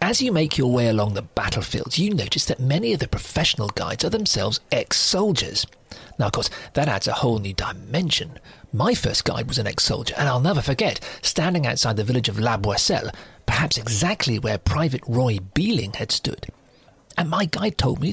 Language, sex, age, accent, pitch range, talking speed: English, male, 40-59, British, 115-160 Hz, 190 wpm